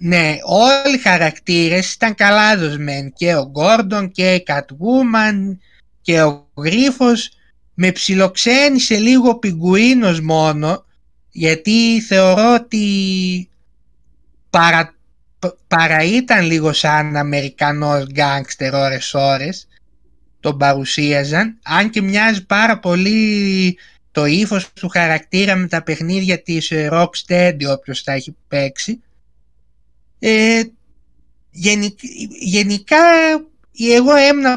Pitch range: 145-215 Hz